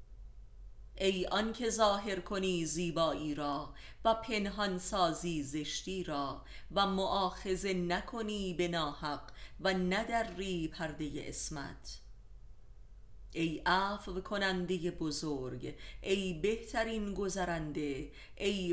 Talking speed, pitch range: 85 wpm, 155-195 Hz